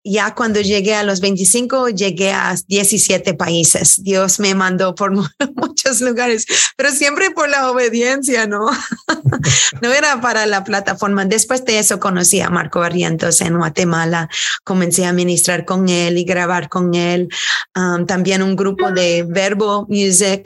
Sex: female